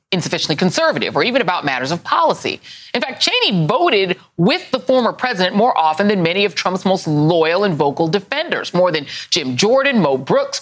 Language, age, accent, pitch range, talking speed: English, 40-59, American, 165-245 Hz, 185 wpm